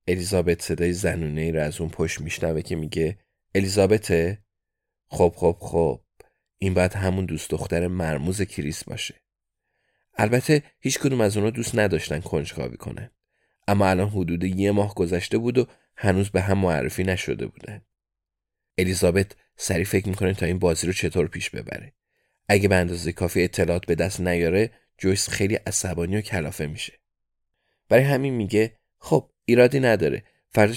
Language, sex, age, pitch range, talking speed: Persian, male, 30-49, 85-105 Hz, 150 wpm